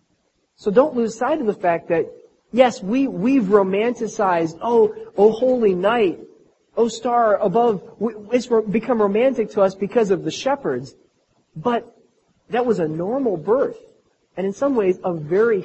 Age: 40-59